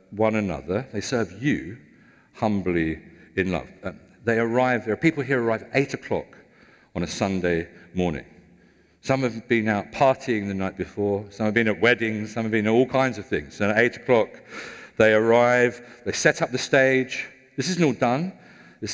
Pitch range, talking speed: 105-130 Hz, 190 wpm